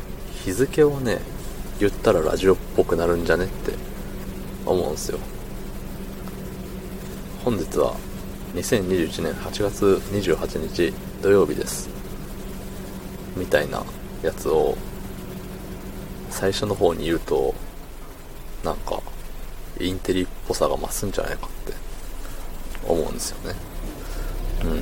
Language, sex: Japanese, male